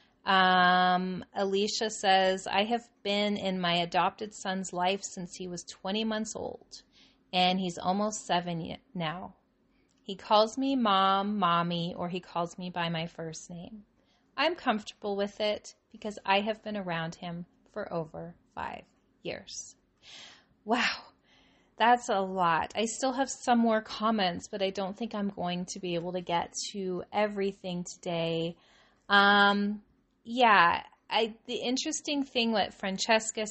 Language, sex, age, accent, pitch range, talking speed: English, female, 30-49, American, 180-220 Hz, 145 wpm